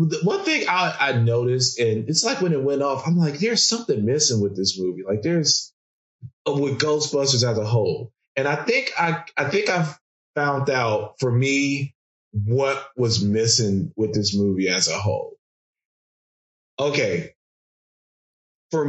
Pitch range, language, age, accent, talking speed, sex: 120-170 Hz, English, 20-39, American, 155 wpm, male